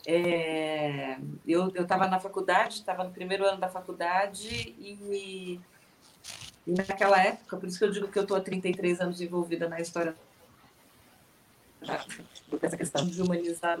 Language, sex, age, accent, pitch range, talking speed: Portuguese, female, 40-59, Brazilian, 170-215 Hz, 155 wpm